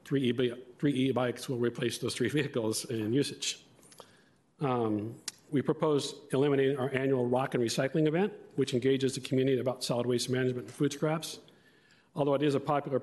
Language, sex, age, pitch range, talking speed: English, male, 50-69, 120-145 Hz, 160 wpm